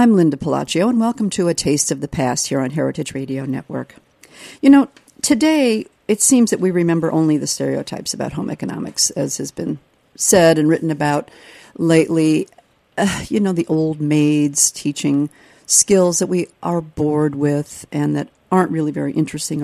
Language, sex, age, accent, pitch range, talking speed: English, female, 50-69, American, 150-205 Hz, 175 wpm